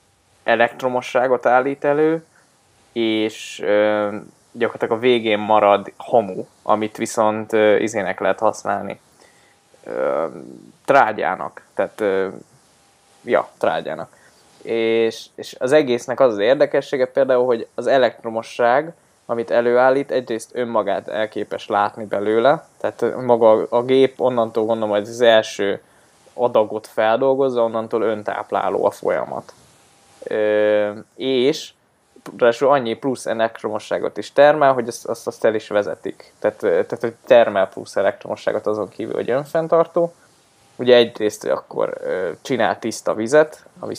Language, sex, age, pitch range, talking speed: Hungarian, male, 20-39, 110-135 Hz, 115 wpm